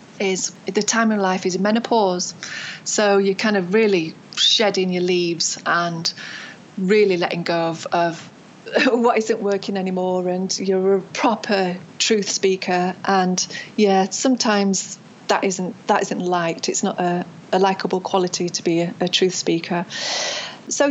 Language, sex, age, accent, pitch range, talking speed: English, female, 30-49, British, 185-225 Hz, 150 wpm